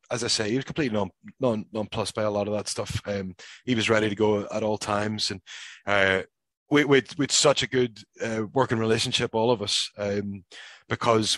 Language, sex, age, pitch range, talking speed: English, male, 20-39, 110-135 Hz, 210 wpm